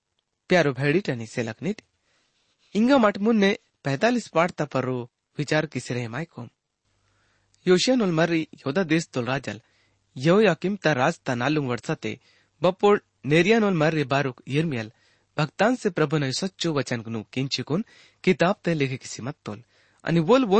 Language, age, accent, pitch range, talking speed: English, 30-49, Indian, 120-190 Hz, 130 wpm